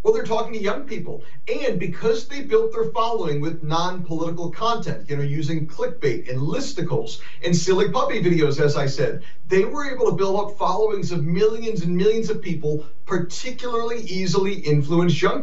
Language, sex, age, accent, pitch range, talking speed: English, male, 40-59, American, 150-195 Hz, 175 wpm